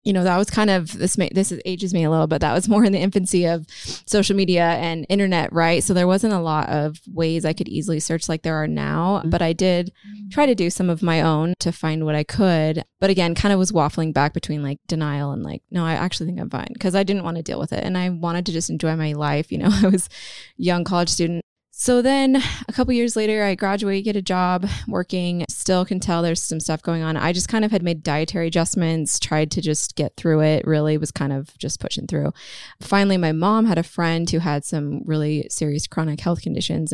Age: 20-39